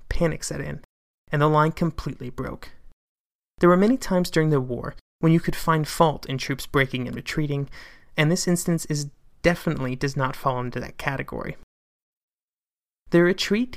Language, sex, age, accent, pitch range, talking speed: English, male, 30-49, American, 135-170 Hz, 165 wpm